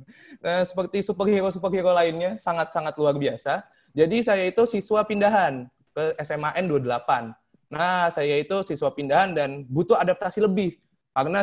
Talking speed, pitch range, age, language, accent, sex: 140 wpm, 135-195 Hz, 20-39, English, Indonesian, male